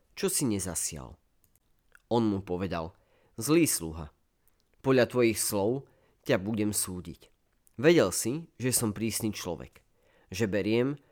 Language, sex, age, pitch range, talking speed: Slovak, male, 30-49, 90-115 Hz, 120 wpm